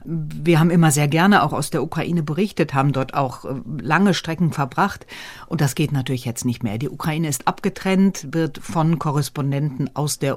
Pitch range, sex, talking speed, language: 145-175 Hz, female, 185 wpm, German